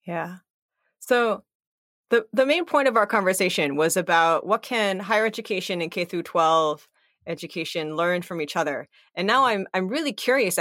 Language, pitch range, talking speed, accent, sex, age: English, 180-235 Hz, 165 wpm, American, female, 30-49